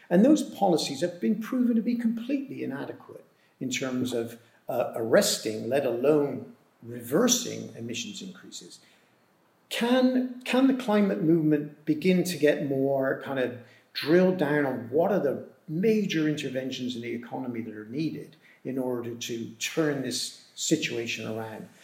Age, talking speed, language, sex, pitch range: 50-69, 145 wpm, English, male, 125-175 Hz